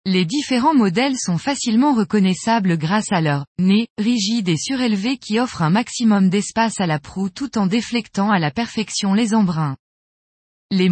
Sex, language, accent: female, French, French